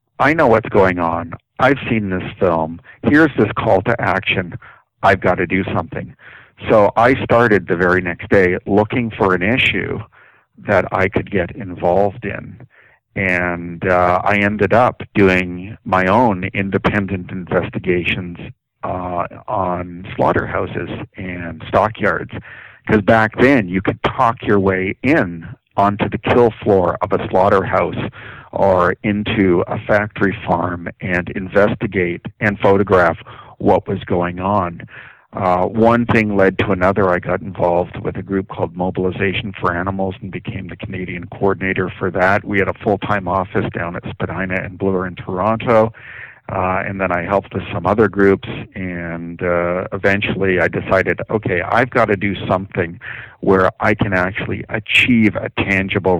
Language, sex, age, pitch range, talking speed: English, male, 50-69, 90-110 Hz, 150 wpm